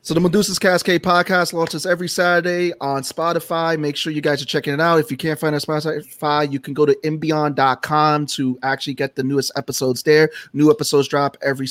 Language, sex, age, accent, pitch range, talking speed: English, male, 30-49, American, 125-155 Hz, 210 wpm